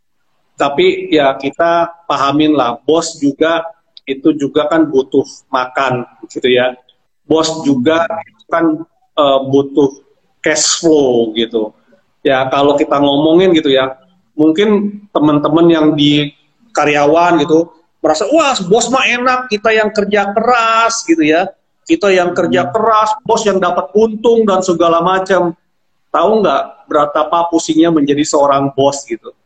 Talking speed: 130 wpm